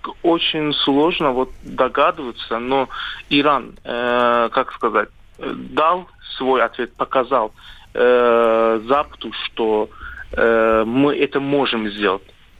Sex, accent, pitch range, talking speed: male, native, 115-140 Hz, 100 wpm